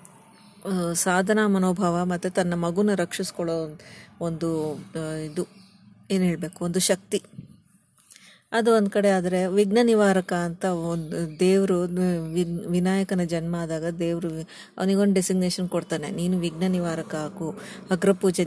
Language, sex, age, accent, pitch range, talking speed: Kannada, female, 20-39, native, 170-195 Hz, 105 wpm